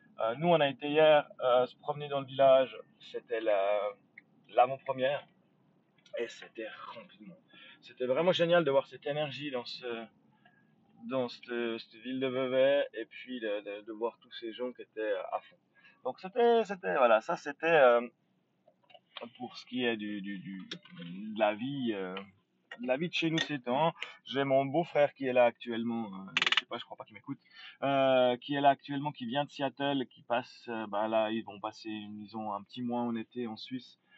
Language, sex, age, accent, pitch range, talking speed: French, male, 20-39, French, 110-145 Hz, 195 wpm